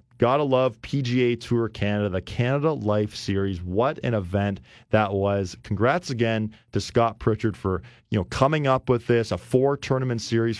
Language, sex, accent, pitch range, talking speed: English, male, American, 100-120 Hz, 175 wpm